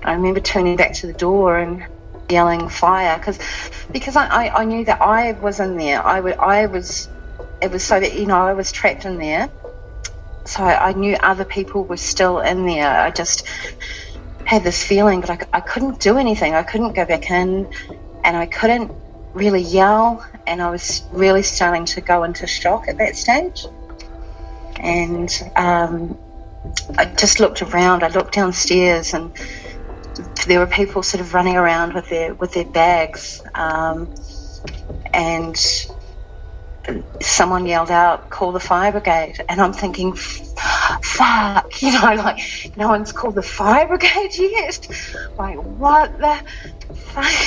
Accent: Australian